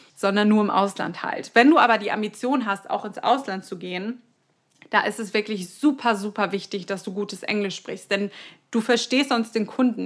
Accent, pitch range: German, 195-235 Hz